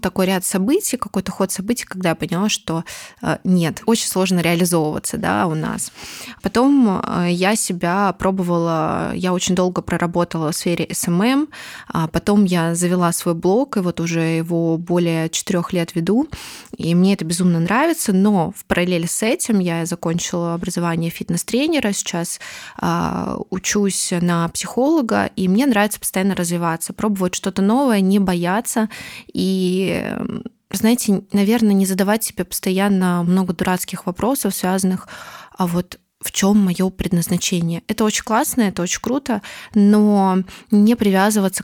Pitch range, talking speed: 175-210 Hz, 135 wpm